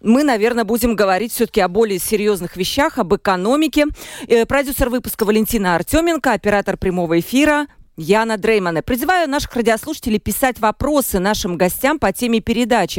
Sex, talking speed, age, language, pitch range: female, 145 wpm, 40-59, Russian, 195-265 Hz